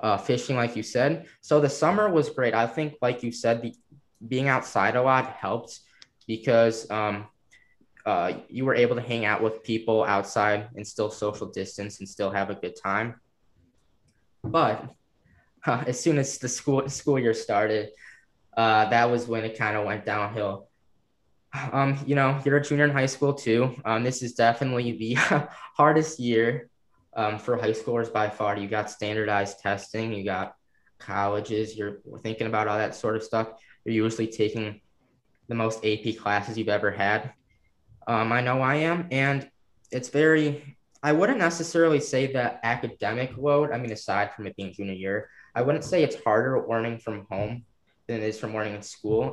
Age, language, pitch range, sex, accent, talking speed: 10-29, English, 105-130 Hz, male, American, 180 wpm